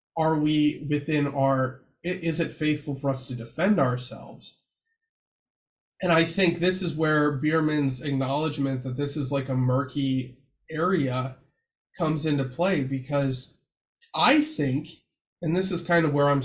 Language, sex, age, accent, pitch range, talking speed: English, male, 20-39, American, 135-165 Hz, 145 wpm